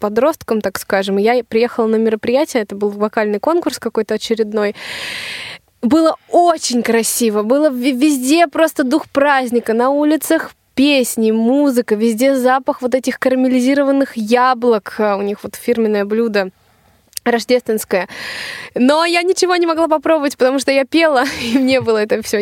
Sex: female